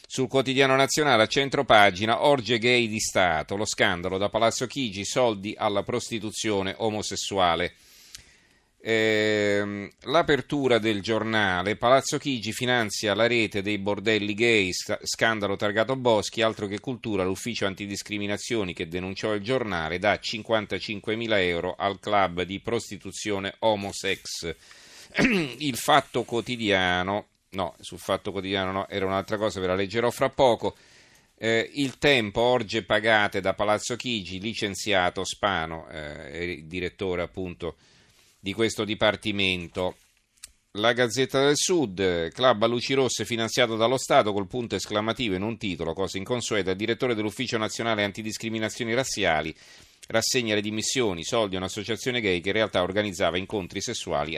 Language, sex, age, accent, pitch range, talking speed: Italian, male, 40-59, native, 95-115 Hz, 135 wpm